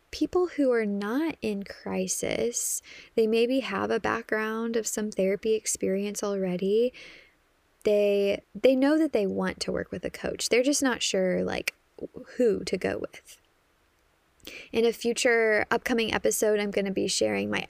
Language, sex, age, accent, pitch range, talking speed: English, female, 10-29, American, 190-235 Hz, 160 wpm